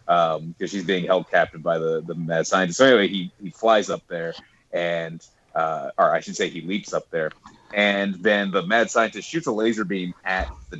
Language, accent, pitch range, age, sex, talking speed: English, American, 90-135 Hz, 30-49, male, 215 wpm